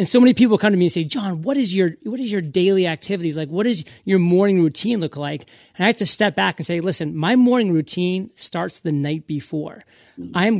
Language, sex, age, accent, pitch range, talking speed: English, male, 30-49, American, 155-195 Hz, 245 wpm